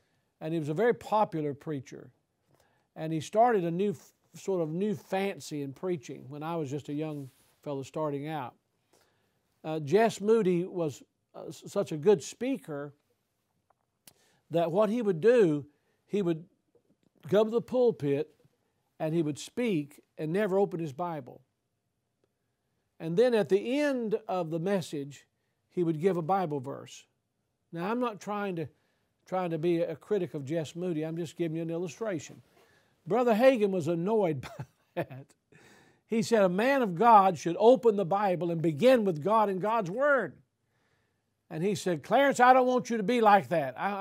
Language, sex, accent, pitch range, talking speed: English, male, American, 150-210 Hz, 170 wpm